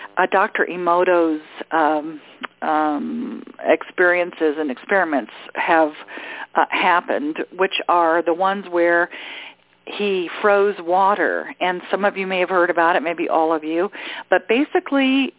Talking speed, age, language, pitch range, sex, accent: 135 wpm, 50-69, English, 170-230 Hz, female, American